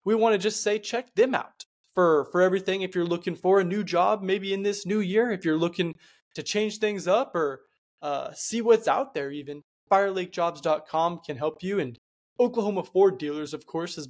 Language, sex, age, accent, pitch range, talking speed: English, male, 20-39, American, 155-195 Hz, 205 wpm